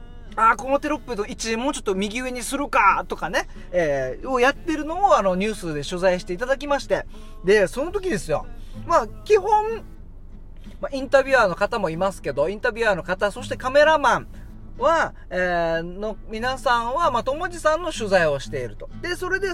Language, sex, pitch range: Japanese, male, 225-325 Hz